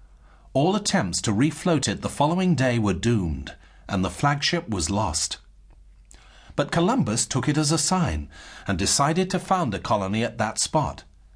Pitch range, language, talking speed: 85-145 Hz, English, 165 wpm